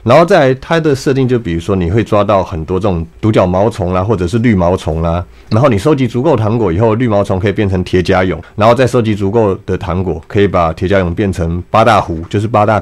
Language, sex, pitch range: Chinese, male, 90-125 Hz